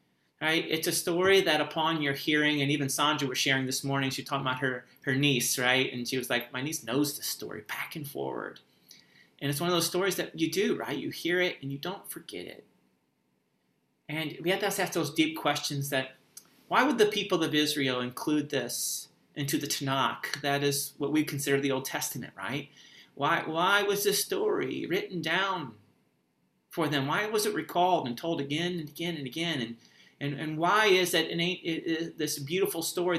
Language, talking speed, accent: English, 205 wpm, American